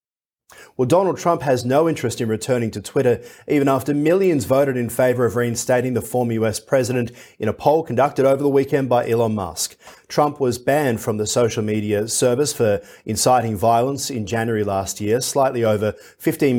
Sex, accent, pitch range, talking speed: male, Australian, 105-135 Hz, 180 wpm